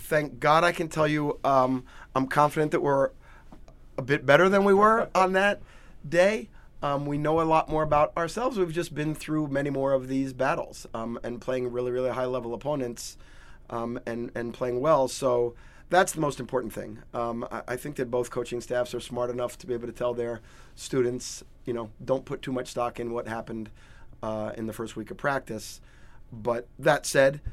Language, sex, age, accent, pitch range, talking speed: English, male, 30-49, American, 120-140 Hz, 205 wpm